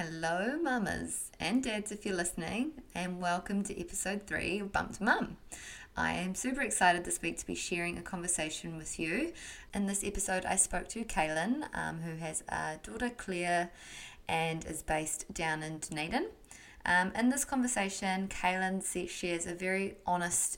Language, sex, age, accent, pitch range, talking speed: English, female, 20-39, Australian, 165-195 Hz, 165 wpm